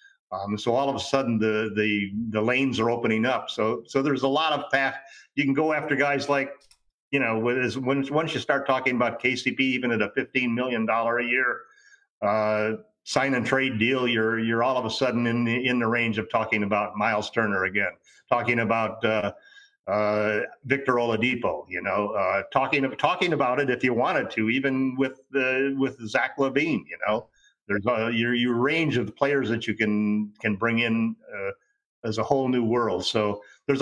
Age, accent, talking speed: 50-69, American, 185 wpm